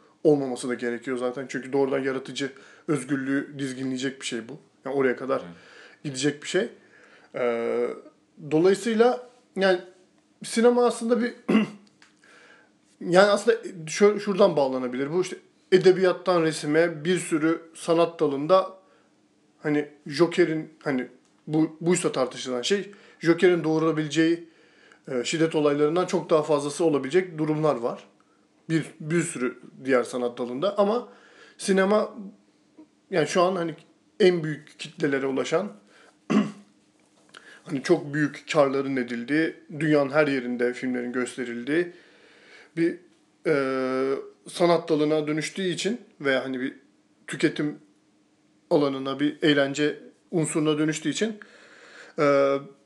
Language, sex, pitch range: Turkish, male, 140-185 Hz